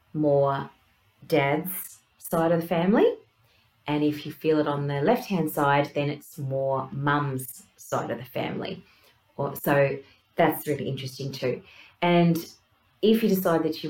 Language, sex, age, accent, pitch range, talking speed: English, female, 30-49, Australian, 135-160 Hz, 150 wpm